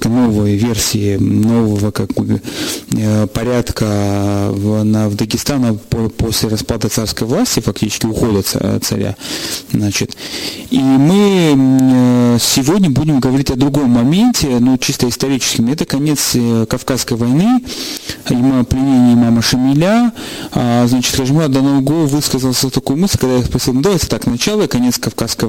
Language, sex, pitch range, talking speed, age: Russian, male, 115-140 Hz, 125 wpm, 30-49